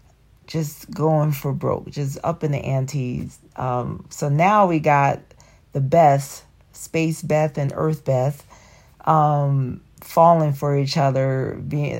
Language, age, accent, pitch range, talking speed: English, 40-59, American, 140-170 Hz, 135 wpm